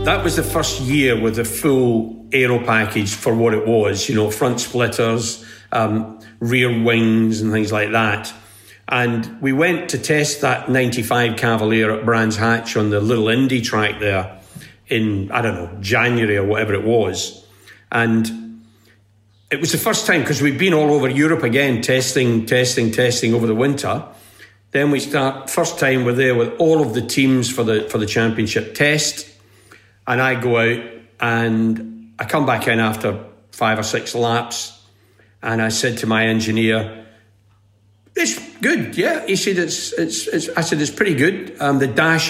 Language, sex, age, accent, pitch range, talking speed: English, male, 50-69, British, 110-135 Hz, 175 wpm